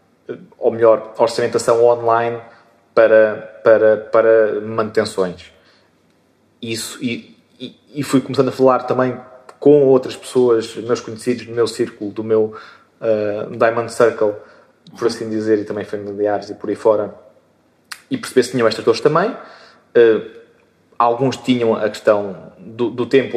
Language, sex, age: Portuguese, male, 20-39